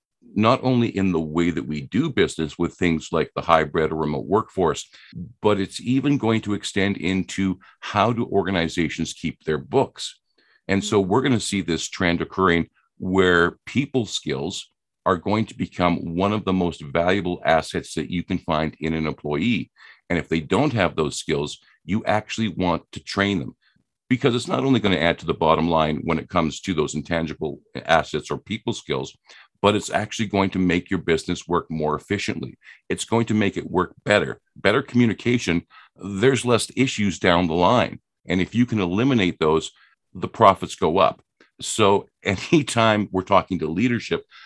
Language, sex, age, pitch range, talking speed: English, male, 50-69, 85-110 Hz, 180 wpm